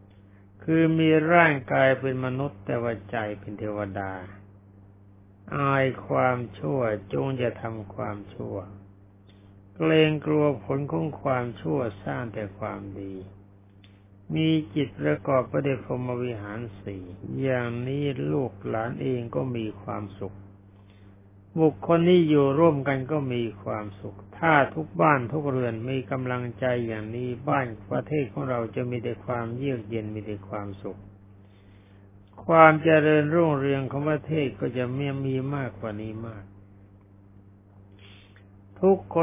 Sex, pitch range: male, 100-140 Hz